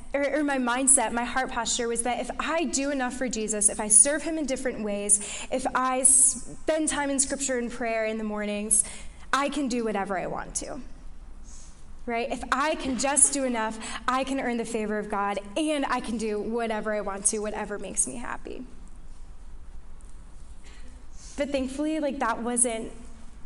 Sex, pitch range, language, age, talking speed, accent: female, 215-270 Hz, English, 10-29, 180 wpm, American